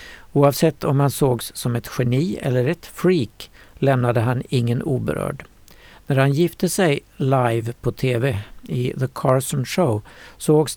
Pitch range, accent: 120-145 Hz, native